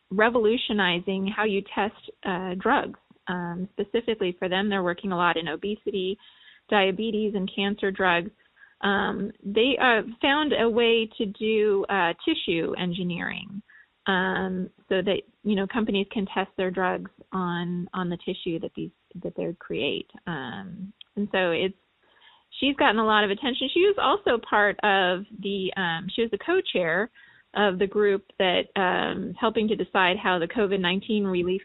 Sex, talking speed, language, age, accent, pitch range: female, 155 wpm, English, 30-49, American, 185-225 Hz